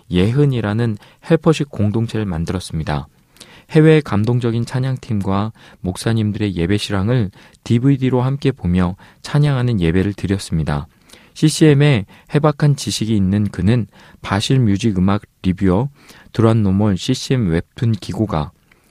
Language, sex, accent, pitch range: Korean, male, native, 95-130 Hz